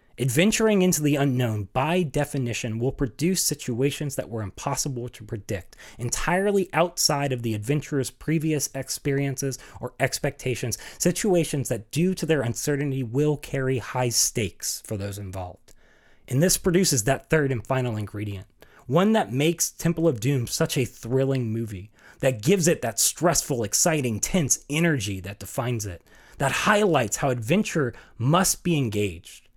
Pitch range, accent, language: 110-165 Hz, American, English